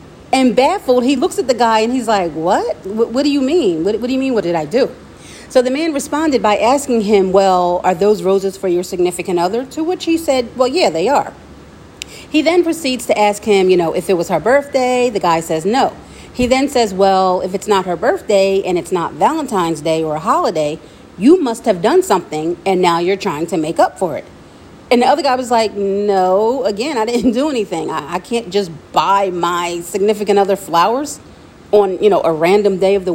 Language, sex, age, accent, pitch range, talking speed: English, female, 40-59, American, 185-255 Hz, 225 wpm